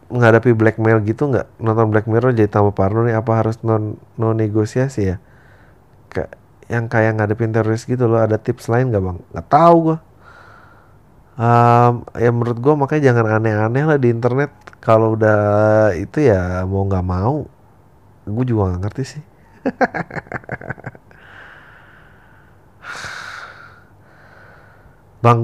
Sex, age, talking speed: male, 30-49, 125 wpm